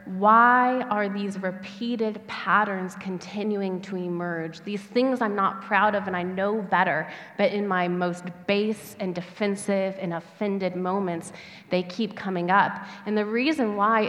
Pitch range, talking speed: 185-225 Hz, 155 wpm